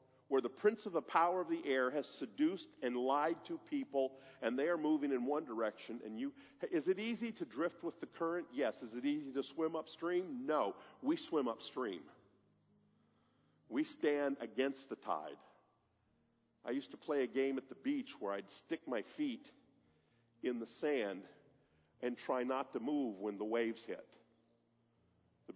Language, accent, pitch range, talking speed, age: English, American, 100-160 Hz, 175 wpm, 50-69